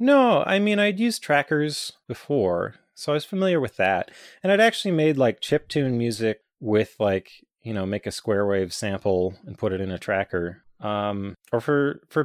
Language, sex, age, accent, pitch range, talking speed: English, male, 30-49, American, 90-130 Hz, 190 wpm